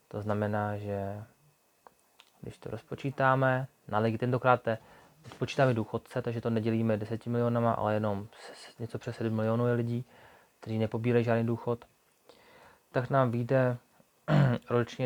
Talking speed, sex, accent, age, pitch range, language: 130 wpm, male, native, 20-39, 110-125 Hz, Czech